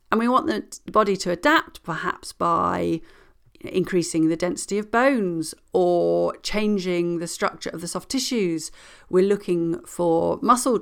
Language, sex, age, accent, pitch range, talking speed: English, female, 40-59, British, 175-230 Hz, 145 wpm